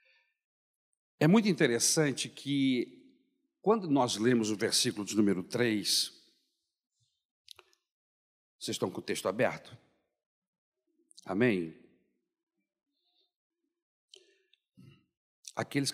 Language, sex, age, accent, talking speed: Portuguese, male, 60-79, Brazilian, 75 wpm